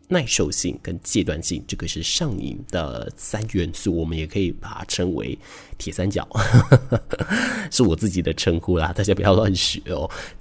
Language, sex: Chinese, male